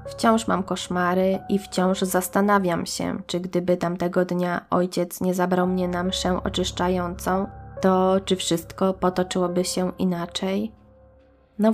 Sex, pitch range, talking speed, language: female, 180-195 Hz, 130 wpm, Polish